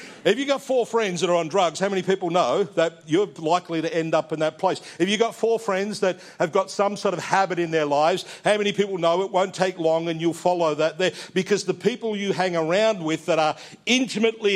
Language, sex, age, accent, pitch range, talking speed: English, male, 50-69, Australian, 140-190 Hz, 245 wpm